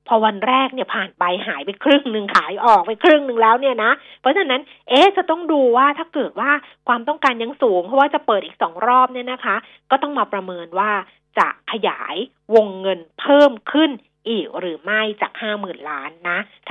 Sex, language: female, Thai